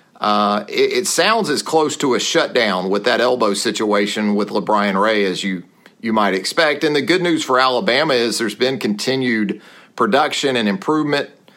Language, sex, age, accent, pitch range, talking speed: English, male, 40-59, American, 105-130 Hz, 175 wpm